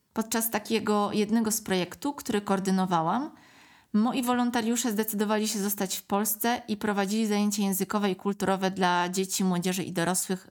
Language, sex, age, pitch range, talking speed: Polish, female, 20-39, 180-220 Hz, 145 wpm